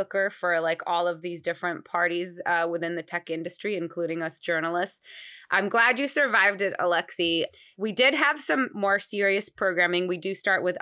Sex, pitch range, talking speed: female, 160-195 Hz, 180 wpm